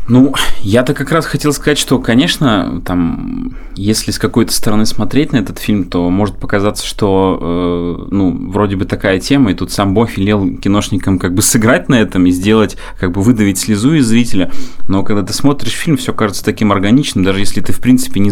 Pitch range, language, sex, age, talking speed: 90-115 Hz, Russian, male, 20-39, 200 wpm